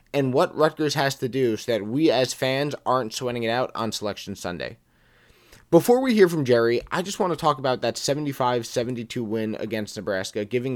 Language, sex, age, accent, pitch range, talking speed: English, male, 20-39, American, 115-140 Hz, 200 wpm